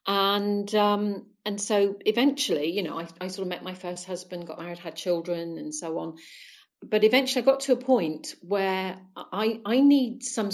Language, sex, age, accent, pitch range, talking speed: English, female, 40-59, British, 170-210 Hz, 195 wpm